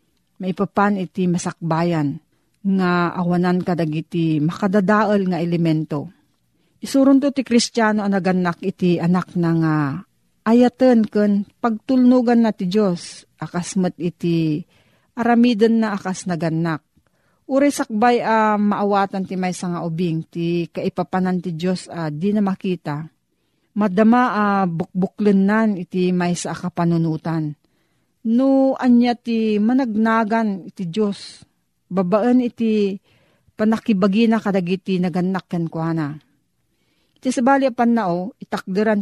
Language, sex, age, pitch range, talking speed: Filipino, female, 40-59, 175-220 Hz, 110 wpm